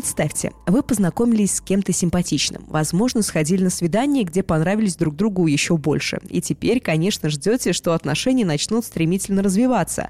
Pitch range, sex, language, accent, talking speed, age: 170-230 Hz, female, Russian, native, 150 wpm, 20-39